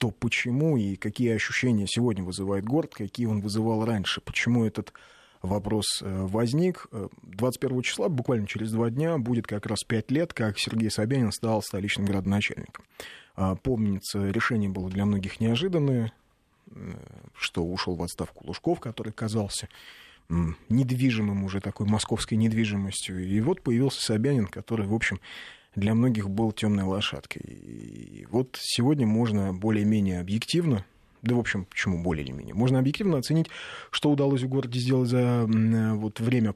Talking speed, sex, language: 140 wpm, male, Russian